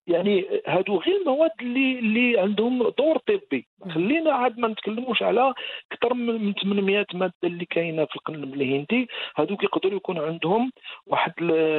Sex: male